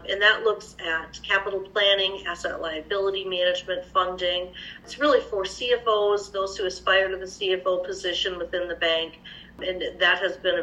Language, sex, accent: English, female, American